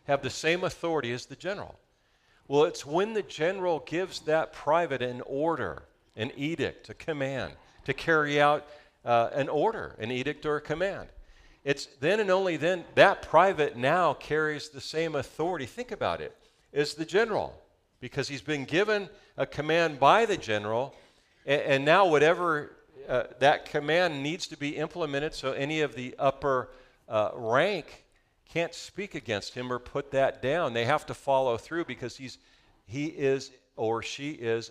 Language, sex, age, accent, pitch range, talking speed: English, male, 50-69, American, 115-160 Hz, 165 wpm